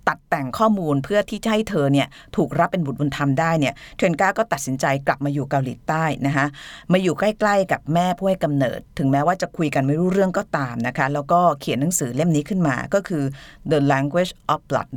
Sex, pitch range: female, 140-180 Hz